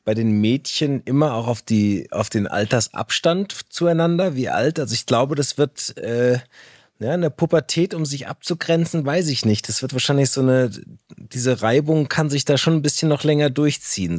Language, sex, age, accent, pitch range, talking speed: German, male, 30-49, German, 110-145 Hz, 190 wpm